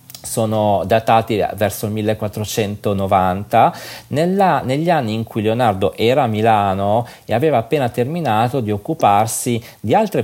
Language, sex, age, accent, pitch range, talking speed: Italian, male, 40-59, native, 105-125 Hz, 125 wpm